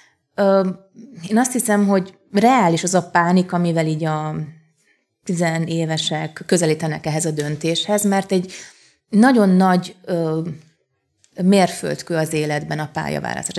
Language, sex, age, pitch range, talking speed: Hungarian, female, 30-49, 160-215 Hz, 110 wpm